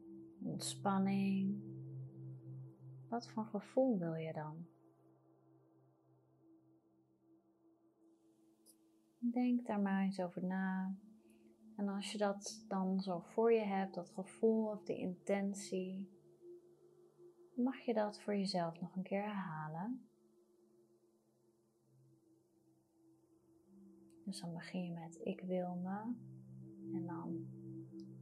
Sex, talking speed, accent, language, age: female, 100 wpm, Dutch, Dutch, 30-49